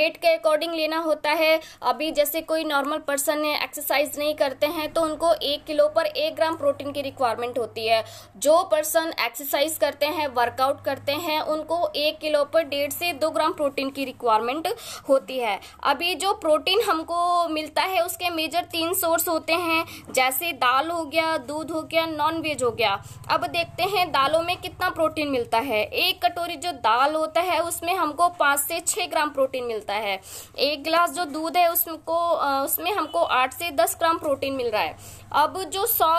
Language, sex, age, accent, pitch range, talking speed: Hindi, female, 20-39, native, 285-340 Hz, 185 wpm